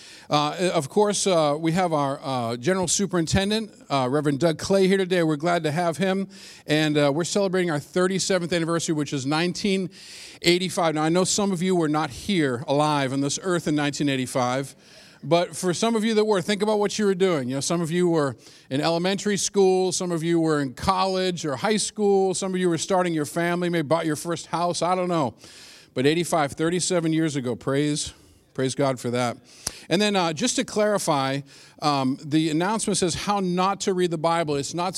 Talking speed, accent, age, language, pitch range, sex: 210 wpm, American, 50-69, English, 150-185 Hz, male